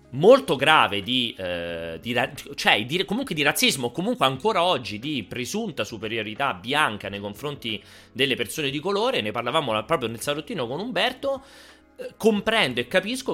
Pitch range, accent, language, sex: 105-165 Hz, native, Italian, male